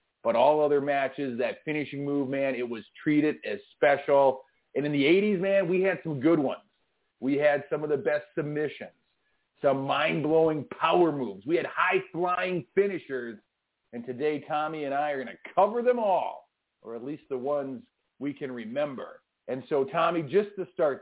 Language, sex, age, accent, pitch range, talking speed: English, male, 40-59, American, 140-180 Hz, 180 wpm